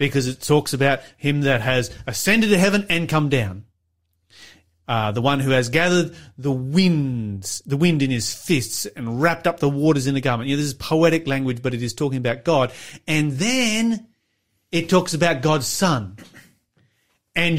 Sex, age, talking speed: male, 30-49, 185 wpm